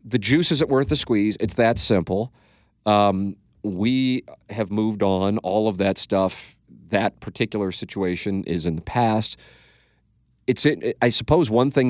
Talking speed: 155 wpm